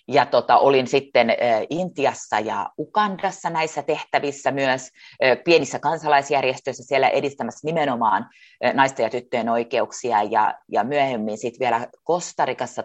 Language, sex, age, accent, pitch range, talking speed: Finnish, female, 30-49, native, 125-170 Hz, 110 wpm